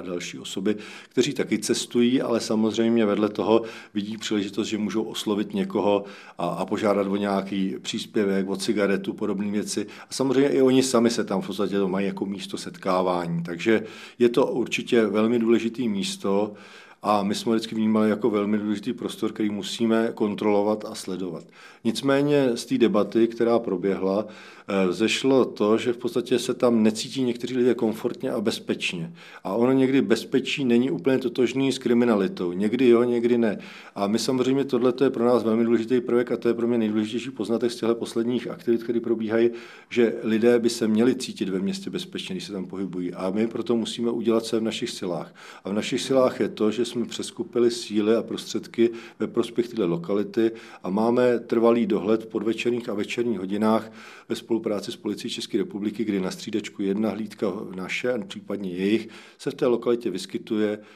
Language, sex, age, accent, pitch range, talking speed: Czech, male, 40-59, native, 100-120 Hz, 180 wpm